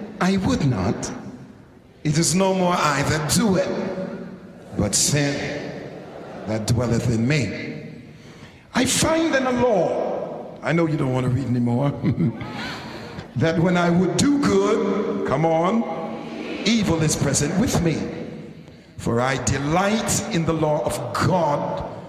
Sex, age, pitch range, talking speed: male, 50-69, 135-200 Hz, 140 wpm